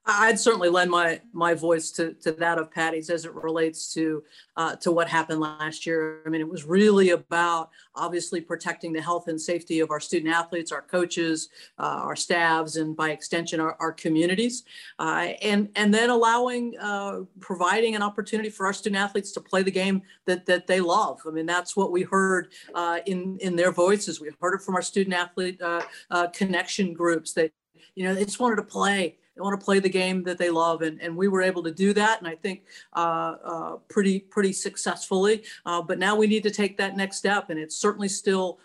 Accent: American